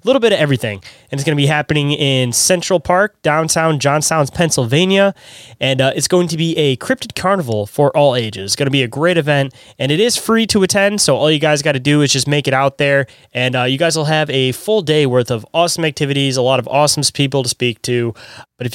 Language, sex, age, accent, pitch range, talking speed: English, male, 10-29, American, 130-170 Hz, 245 wpm